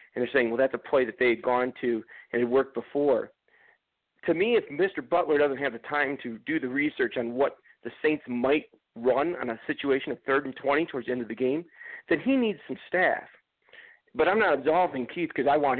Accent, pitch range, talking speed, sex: American, 125-165 Hz, 230 wpm, male